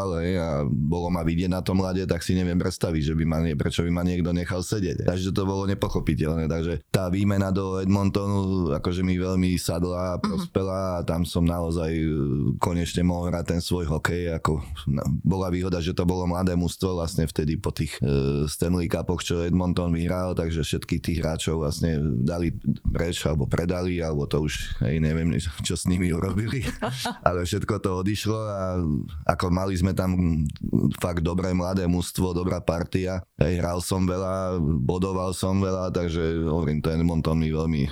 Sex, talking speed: male, 175 wpm